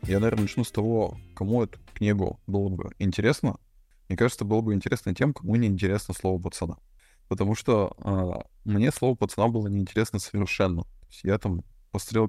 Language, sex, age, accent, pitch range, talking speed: Russian, male, 20-39, native, 90-110 Hz, 170 wpm